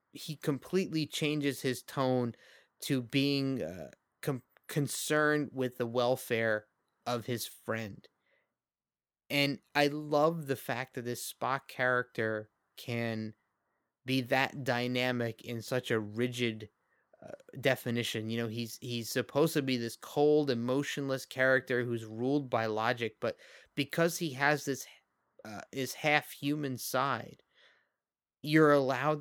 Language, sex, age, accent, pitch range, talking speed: English, male, 30-49, American, 120-145 Hz, 125 wpm